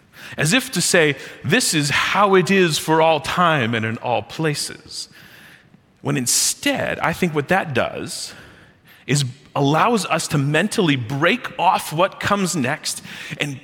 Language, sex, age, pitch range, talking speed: English, male, 40-59, 135-185 Hz, 150 wpm